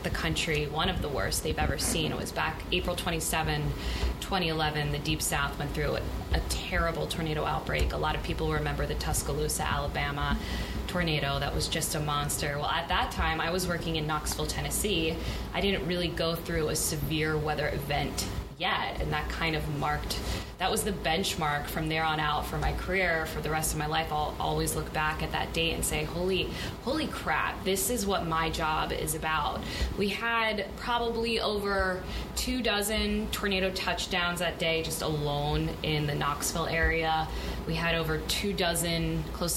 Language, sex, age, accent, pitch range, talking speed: English, female, 20-39, American, 150-180 Hz, 185 wpm